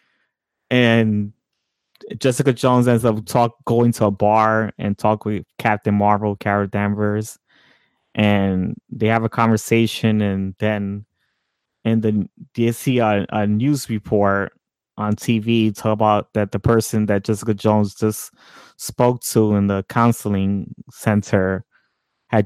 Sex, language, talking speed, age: male, English, 135 wpm, 20-39